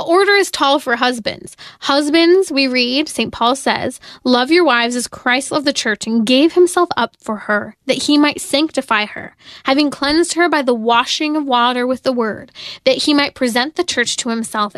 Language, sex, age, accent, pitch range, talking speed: English, female, 10-29, American, 235-280 Hz, 200 wpm